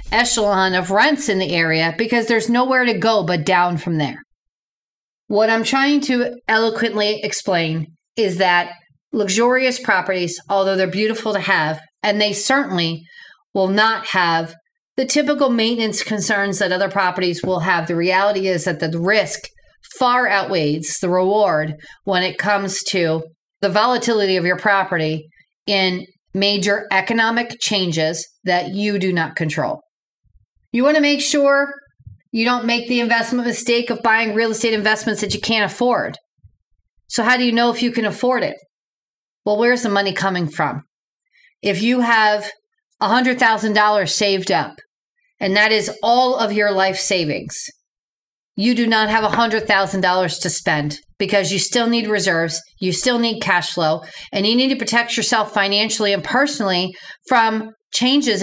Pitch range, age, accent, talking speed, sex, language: 185-235 Hz, 40-59, American, 155 wpm, female, English